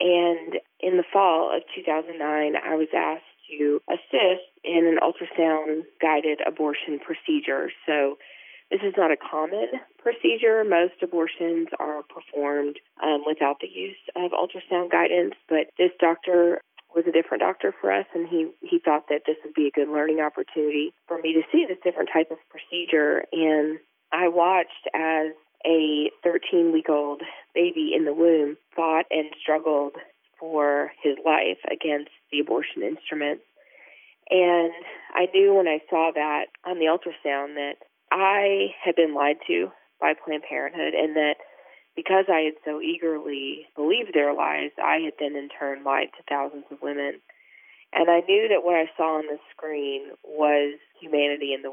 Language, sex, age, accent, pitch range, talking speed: English, female, 30-49, American, 150-175 Hz, 160 wpm